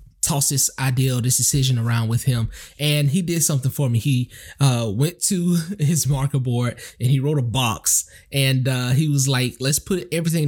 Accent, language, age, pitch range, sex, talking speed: American, English, 20-39, 125-150 Hz, male, 200 wpm